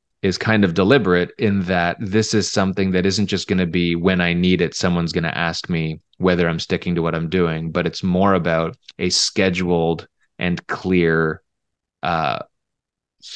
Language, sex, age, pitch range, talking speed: English, male, 20-39, 85-100 Hz, 180 wpm